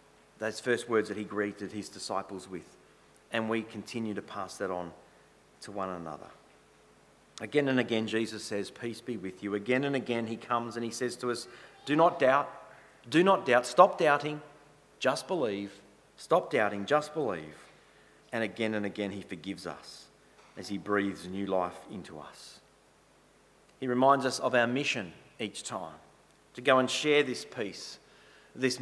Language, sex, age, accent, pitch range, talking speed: English, male, 40-59, Australian, 100-125 Hz, 170 wpm